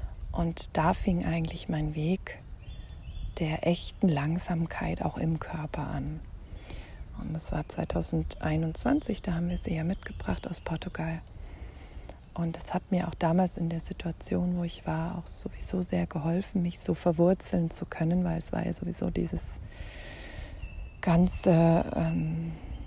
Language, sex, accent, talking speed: German, female, German, 140 wpm